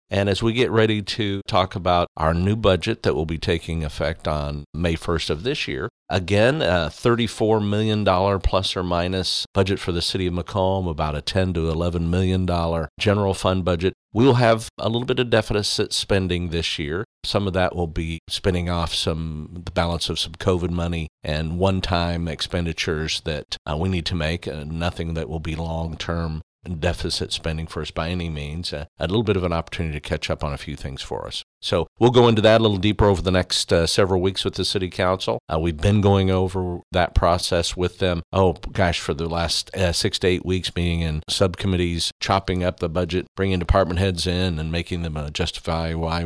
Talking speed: 210 wpm